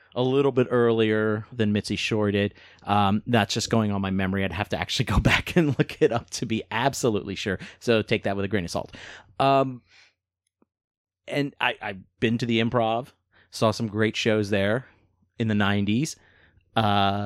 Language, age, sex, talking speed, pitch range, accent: English, 30-49, male, 185 wpm, 100-125 Hz, American